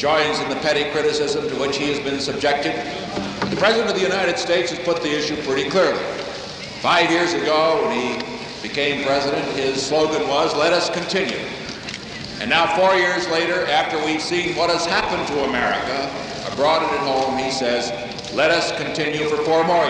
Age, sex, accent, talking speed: 60-79, male, American, 185 wpm